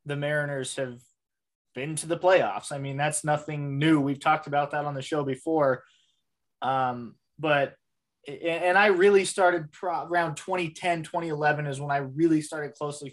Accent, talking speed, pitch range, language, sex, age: American, 160 wpm, 135-160 Hz, English, male, 20-39